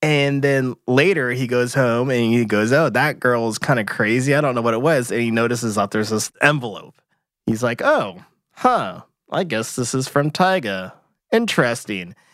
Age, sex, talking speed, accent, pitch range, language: 20-39, male, 195 wpm, American, 110-140 Hz, English